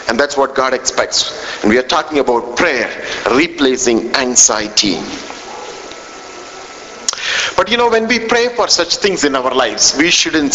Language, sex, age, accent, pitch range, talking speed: English, male, 50-69, Indian, 185-270 Hz, 155 wpm